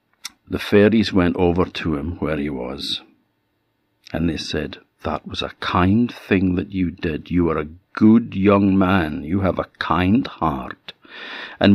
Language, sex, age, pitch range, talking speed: English, male, 60-79, 90-135 Hz, 165 wpm